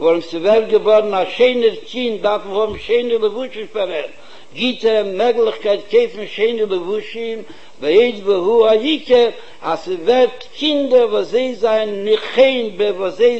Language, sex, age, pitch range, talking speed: Hebrew, male, 60-79, 210-265 Hz, 100 wpm